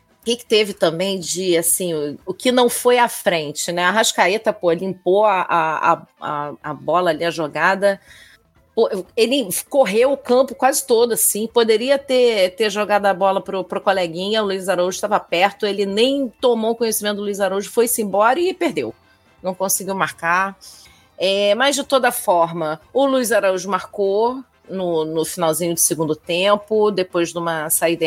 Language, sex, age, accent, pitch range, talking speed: Portuguese, female, 40-59, Brazilian, 175-235 Hz, 160 wpm